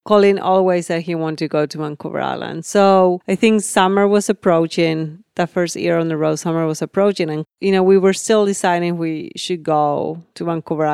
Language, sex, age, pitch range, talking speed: English, female, 30-49, 175-215 Hz, 210 wpm